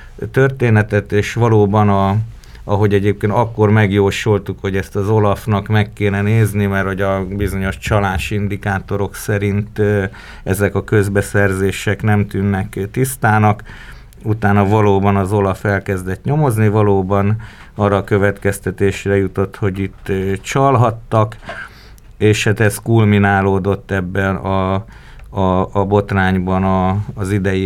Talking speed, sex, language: 115 wpm, male, Hungarian